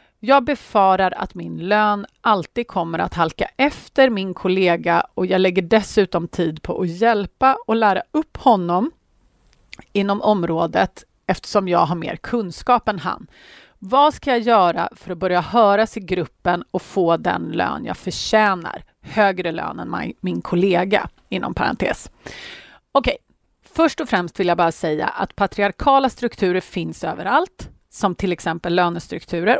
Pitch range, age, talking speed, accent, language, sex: 175-225 Hz, 30-49, 150 wpm, native, Swedish, female